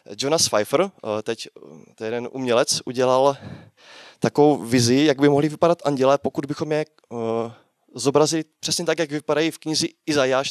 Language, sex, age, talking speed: Czech, male, 20-39, 145 wpm